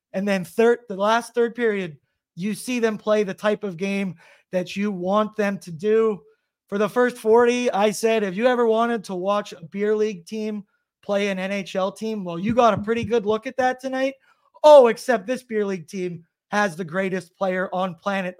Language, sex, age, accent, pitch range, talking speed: English, male, 30-49, American, 195-245 Hz, 205 wpm